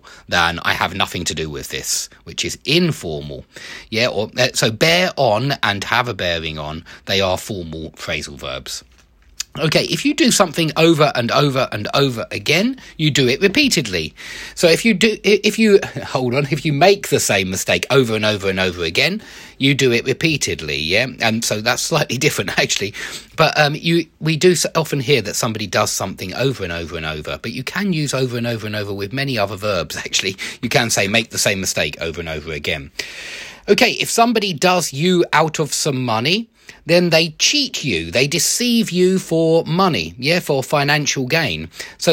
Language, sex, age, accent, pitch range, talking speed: English, male, 30-49, British, 110-175 Hz, 195 wpm